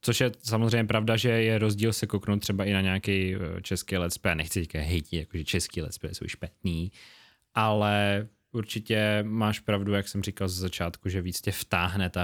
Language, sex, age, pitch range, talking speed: Czech, male, 20-39, 95-115 Hz, 180 wpm